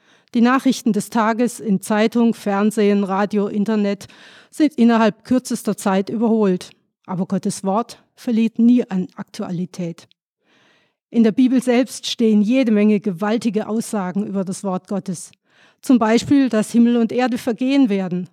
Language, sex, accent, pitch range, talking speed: German, female, German, 200-240 Hz, 135 wpm